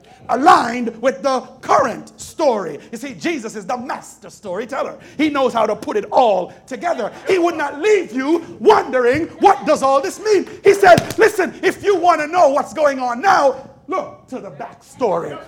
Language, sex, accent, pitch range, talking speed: English, male, American, 265-340 Hz, 185 wpm